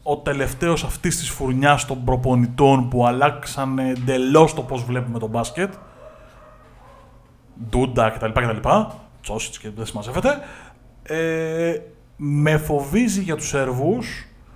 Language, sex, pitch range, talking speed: Greek, male, 120-155 Hz, 110 wpm